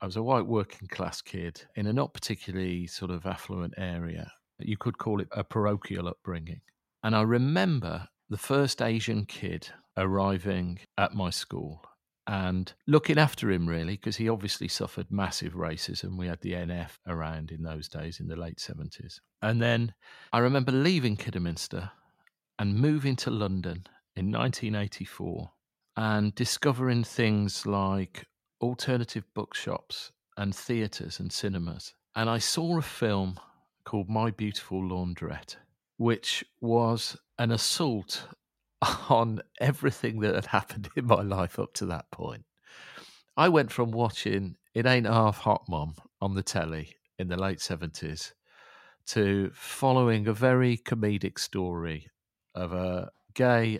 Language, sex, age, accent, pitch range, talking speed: English, male, 40-59, British, 90-115 Hz, 145 wpm